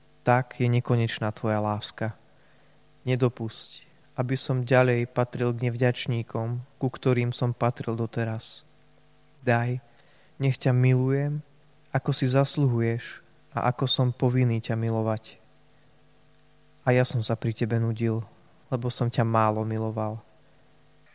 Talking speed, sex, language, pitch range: 120 wpm, male, Slovak, 115-135 Hz